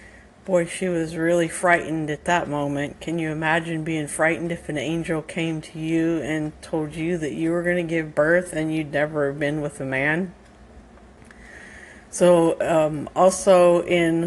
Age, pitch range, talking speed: 50-69, 150-175 Hz, 170 wpm